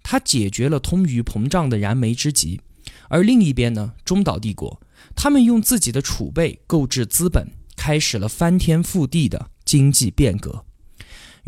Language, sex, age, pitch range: Chinese, male, 20-39, 115-170 Hz